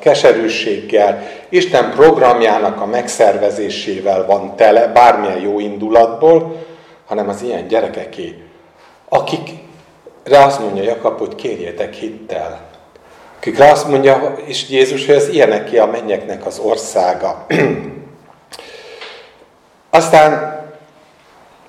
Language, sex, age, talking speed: Hungarian, male, 50-69, 95 wpm